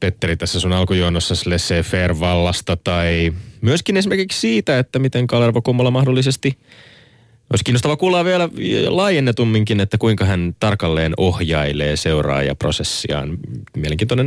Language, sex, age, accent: Finnish, male, 20-39, native